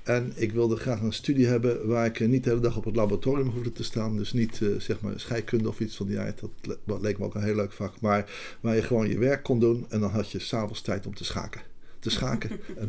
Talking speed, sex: 280 wpm, male